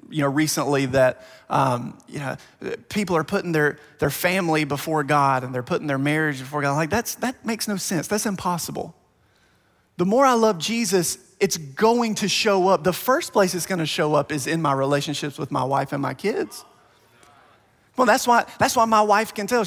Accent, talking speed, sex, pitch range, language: American, 205 wpm, male, 155-215 Hz, English